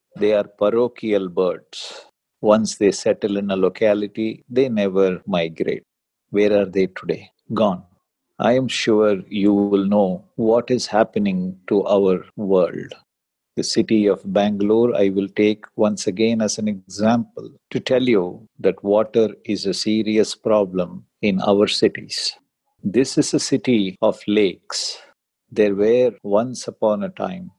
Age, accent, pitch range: 50-69, Indian, 100-125 Hz